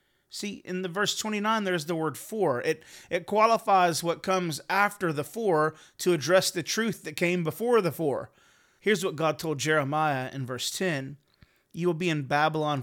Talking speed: 180 wpm